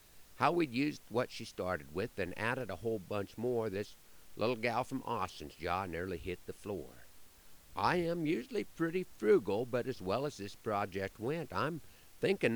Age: 50-69